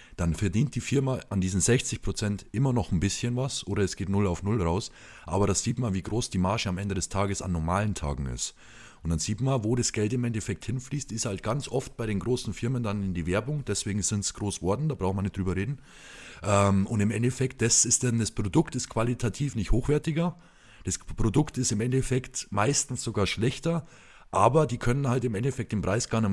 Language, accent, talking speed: German, German, 225 wpm